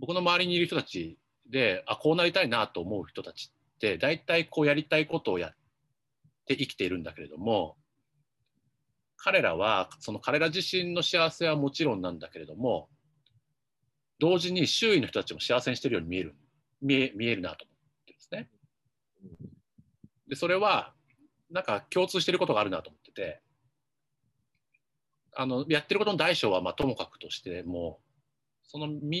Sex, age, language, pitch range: male, 50-69, Japanese, 130-170 Hz